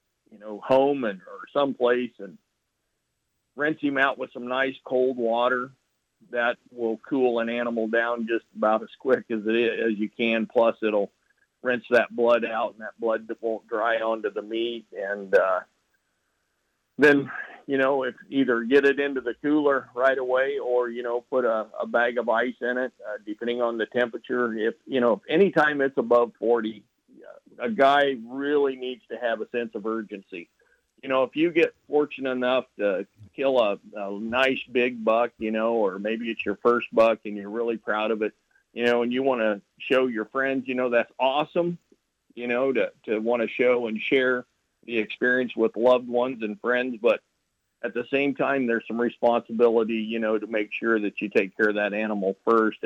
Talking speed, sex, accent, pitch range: 195 wpm, male, American, 110-130 Hz